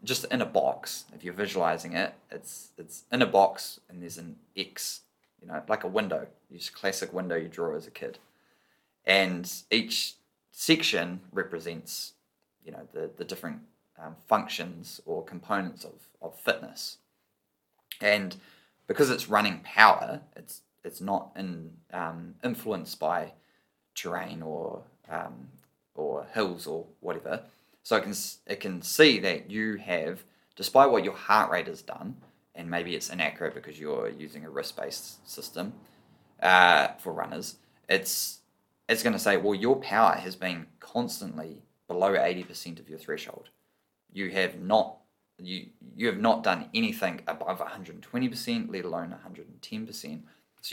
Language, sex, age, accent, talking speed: English, male, 20-39, Australian, 160 wpm